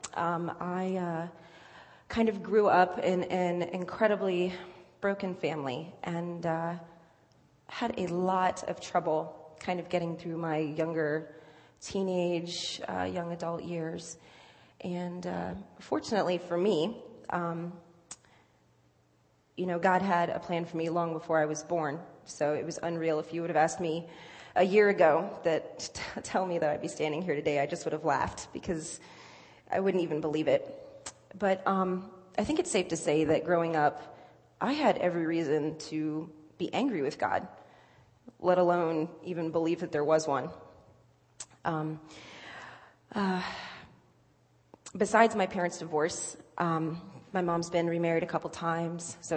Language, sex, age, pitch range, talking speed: English, female, 30-49, 160-180 Hz, 155 wpm